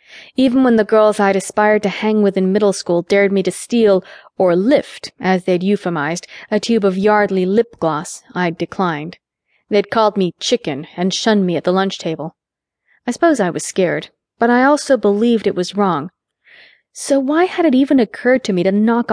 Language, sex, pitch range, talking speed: English, female, 180-220 Hz, 195 wpm